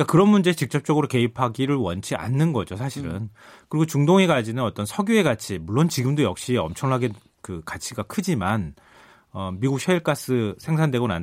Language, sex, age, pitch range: Korean, male, 30-49, 105-165 Hz